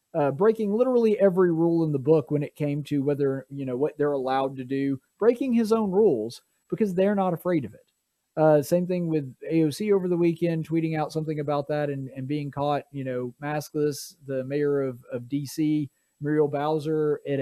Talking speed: 200 wpm